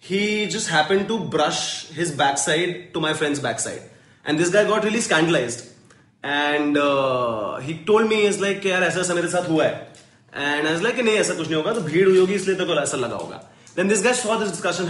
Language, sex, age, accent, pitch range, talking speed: English, male, 20-39, Indian, 155-200 Hz, 185 wpm